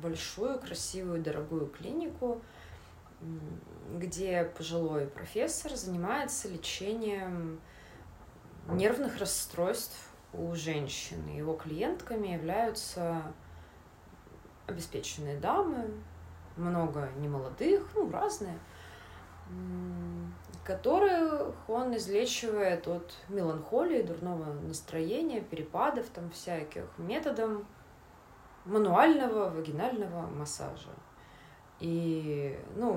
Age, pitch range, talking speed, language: 20-39, 145-225 Hz, 70 wpm, Russian